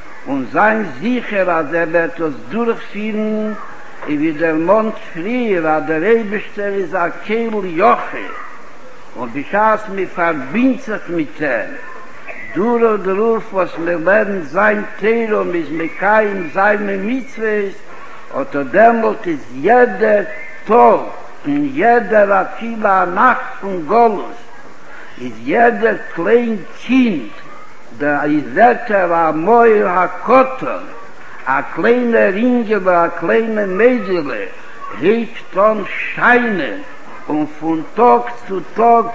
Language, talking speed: Hebrew, 115 wpm